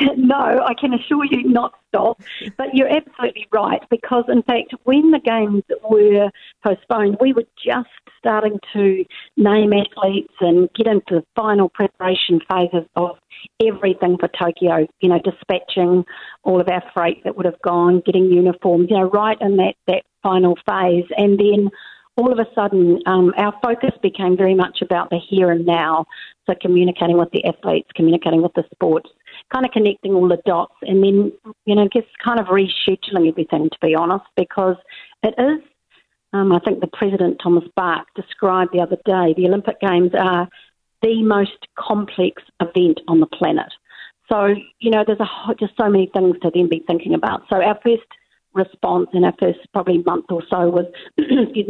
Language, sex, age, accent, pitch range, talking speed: English, female, 50-69, Australian, 180-220 Hz, 180 wpm